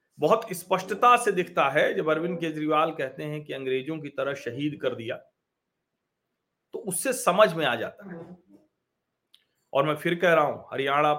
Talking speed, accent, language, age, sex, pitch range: 165 wpm, native, Hindi, 40-59, male, 135-175 Hz